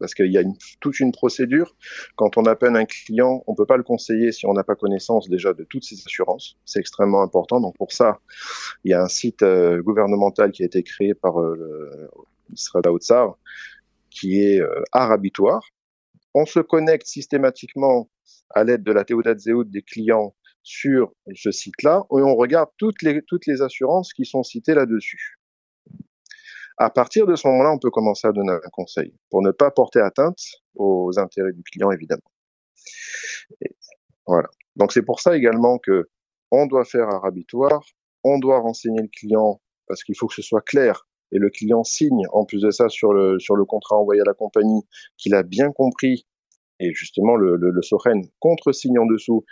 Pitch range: 100-135 Hz